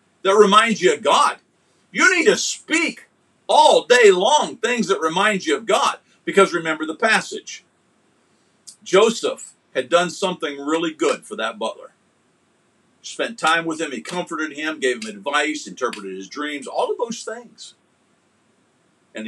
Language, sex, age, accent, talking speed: English, male, 50-69, American, 155 wpm